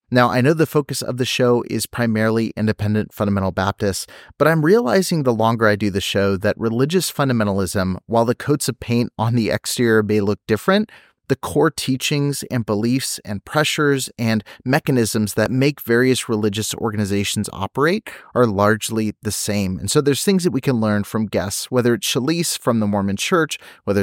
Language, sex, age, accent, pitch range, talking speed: English, male, 30-49, American, 105-135 Hz, 180 wpm